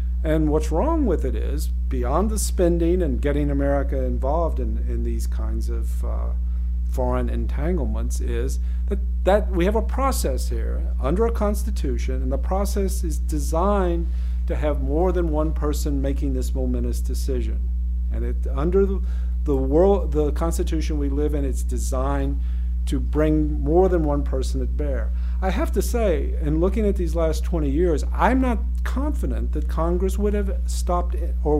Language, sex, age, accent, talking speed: English, male, 50-69, American, 165 wpm